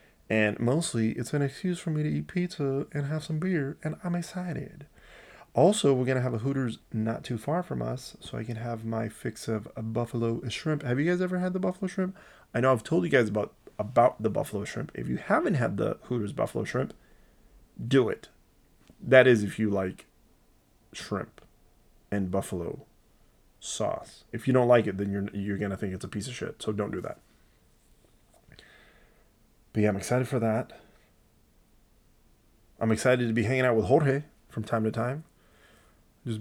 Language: English